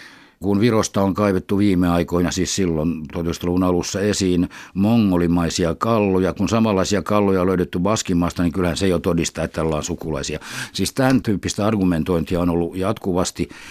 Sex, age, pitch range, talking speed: male, 60-79, 85-105 Hz, 160 wpm